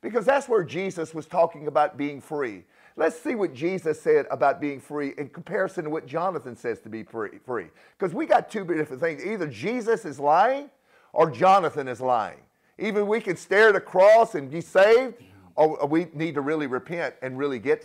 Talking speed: 200 wpm